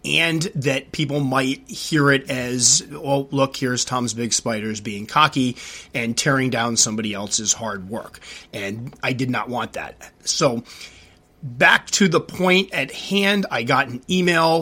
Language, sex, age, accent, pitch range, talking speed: English, male, 30-49, American, 115-145 Hz, 160 wpm